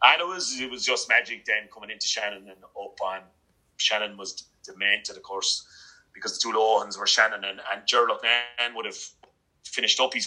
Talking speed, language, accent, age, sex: 205 wpm, English, British, 30-49, male